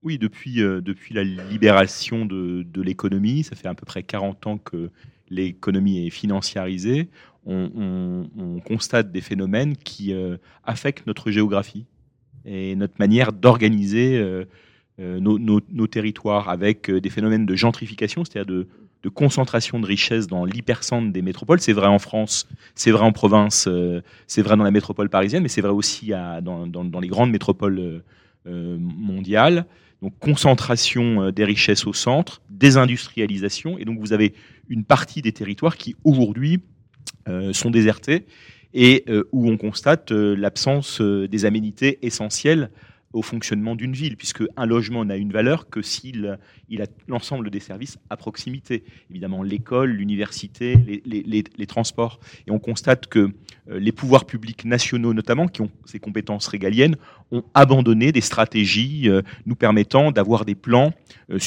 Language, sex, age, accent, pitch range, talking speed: French, male, 30-49, French, 100-125 Hz, 160 wpm